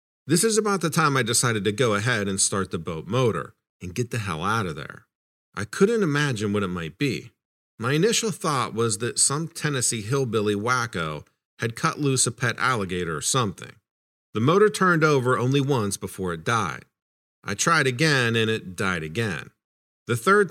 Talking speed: 185 wpm